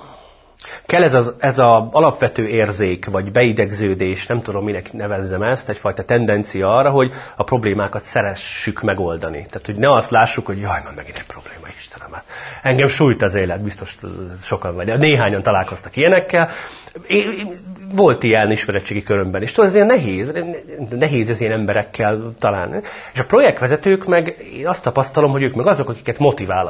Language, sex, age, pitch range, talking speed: Hungarian, male, 30-49, 100-145 Hz, 155 wpm